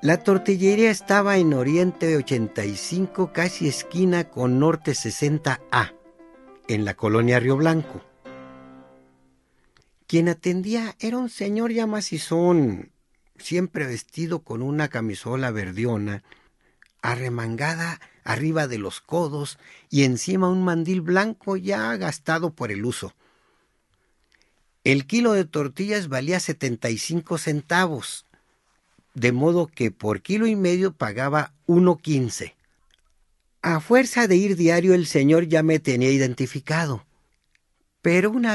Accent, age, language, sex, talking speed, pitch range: Mexican, 50-69, Spanish, male, 115 wpm, 130-185 Hz